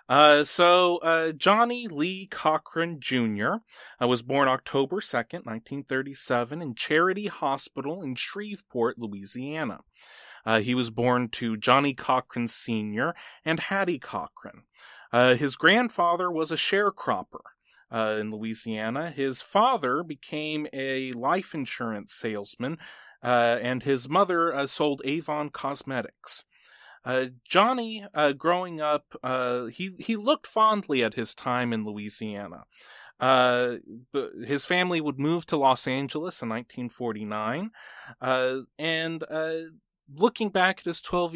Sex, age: male, 30-49